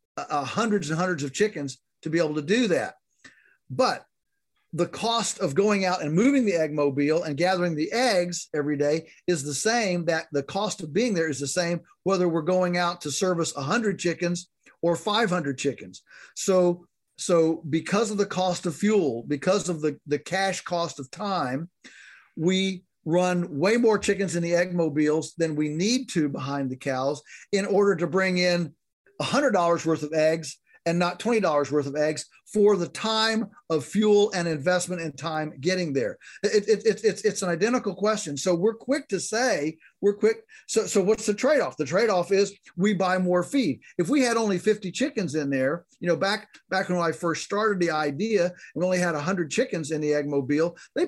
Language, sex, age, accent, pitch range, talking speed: English, male, 50-69, American, 160-205 Hz, 195 wpm